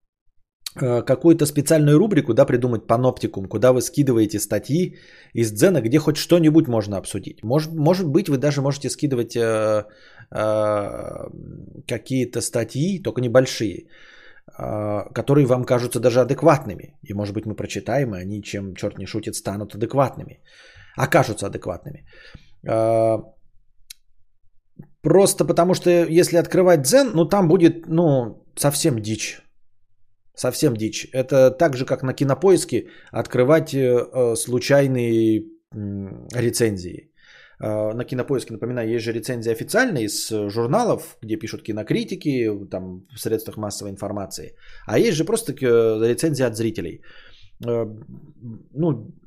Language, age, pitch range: Bulgarian, 20-39, 105-150 Hz